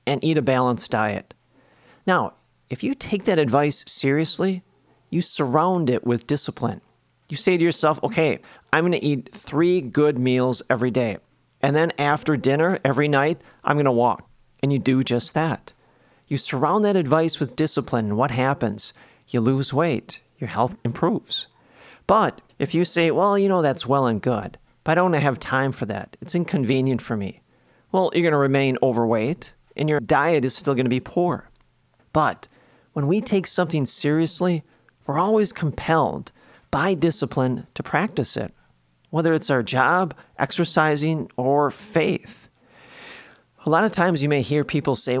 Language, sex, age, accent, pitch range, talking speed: English, male, 40-59, American, 125-160 Hz, 170 wpm